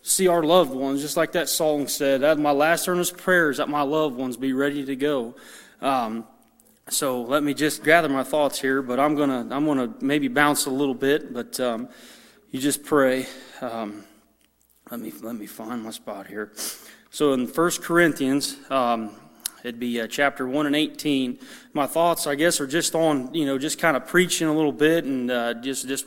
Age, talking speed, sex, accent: 30-49, 200 wpm, male, American